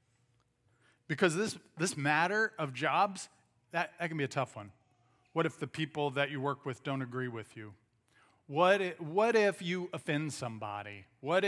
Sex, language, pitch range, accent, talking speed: male, English, 125-175 Hz, American, 175 wpm